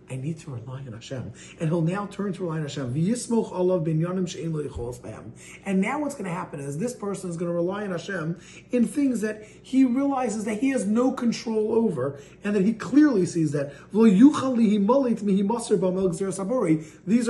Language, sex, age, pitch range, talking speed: English, male, 30-49, 170-230 Hz, 165 wpm